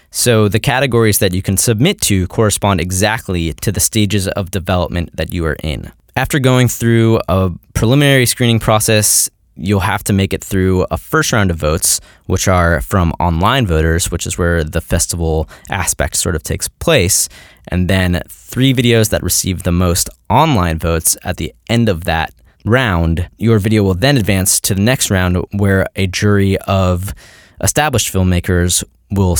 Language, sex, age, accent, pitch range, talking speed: English, male, 20-39, American, 85-110 Hz, 170 wpm